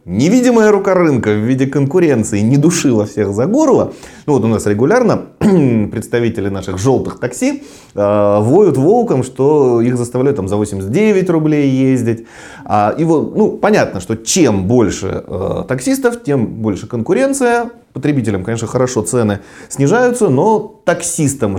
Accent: native